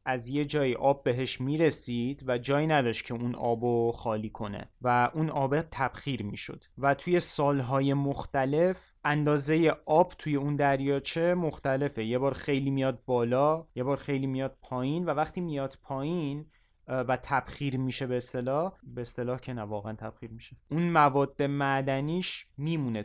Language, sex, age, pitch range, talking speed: Persian, male, 30-49, 125-150 Hz, 150 wpm